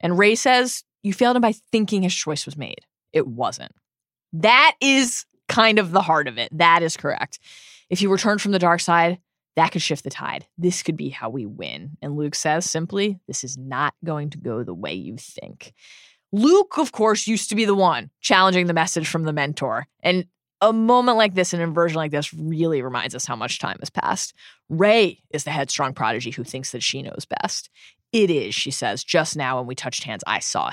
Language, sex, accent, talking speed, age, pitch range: English, female, American, 215 wpm, 20-39, 150-225 Hz